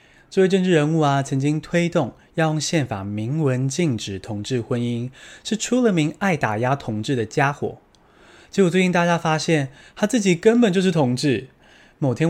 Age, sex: 20-39, male